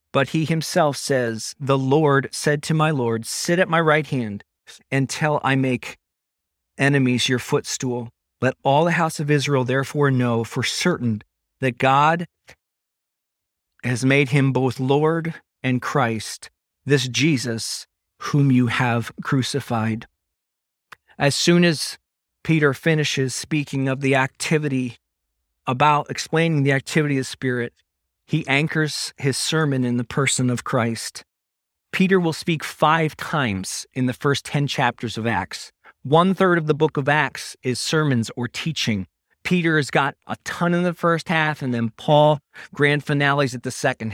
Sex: male